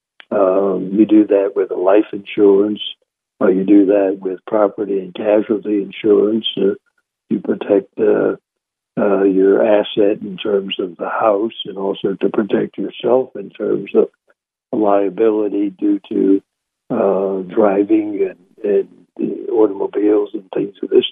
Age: 60-79